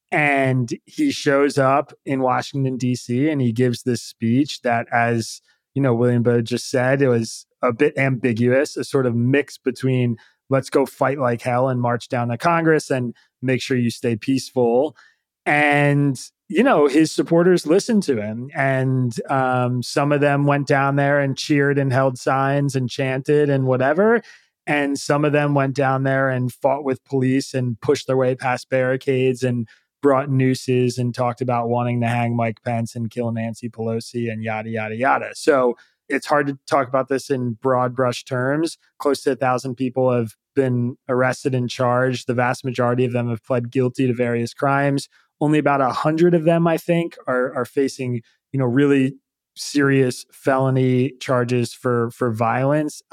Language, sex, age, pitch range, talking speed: English, male, 20-39, 120-140 Hz, 180 wpm